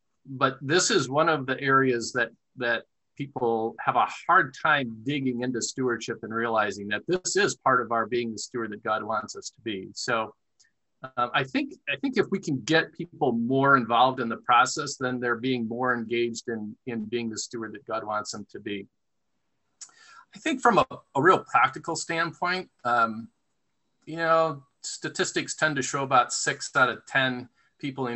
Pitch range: 120-155 Hz